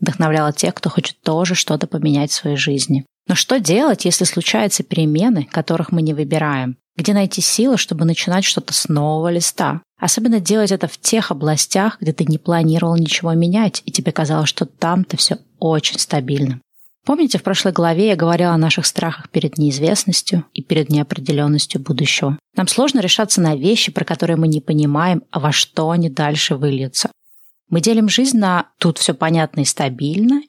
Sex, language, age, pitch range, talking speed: female, Russian, 20-39, 155-200 Hz, 175 wpm